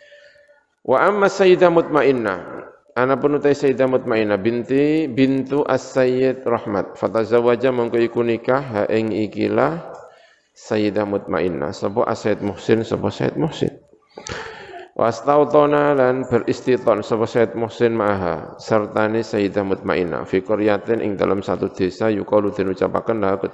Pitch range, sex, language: 105-170 Hz, male, Indonesian